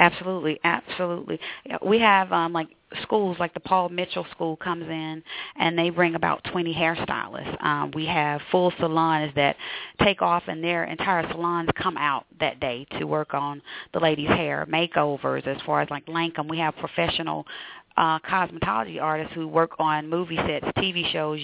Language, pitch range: English, 150-170 Hz